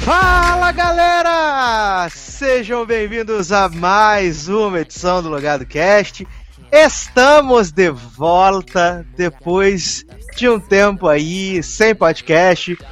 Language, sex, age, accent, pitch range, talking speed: Portuguese, male, 20-39, Brazilian, 165-235 Hz, 100 wpm